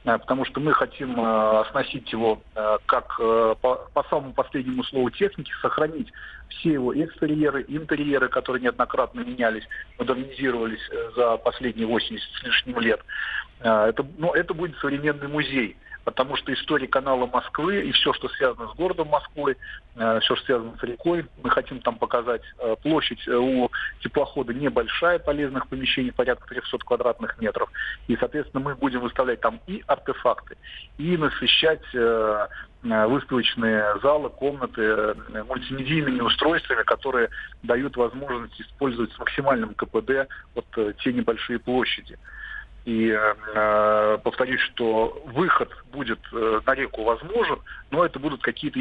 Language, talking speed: Russian, 140 wpm